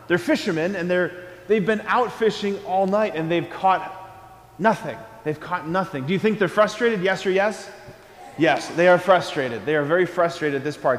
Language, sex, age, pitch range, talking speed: English, male, 30-49, 145-195 Hz, 190 wpm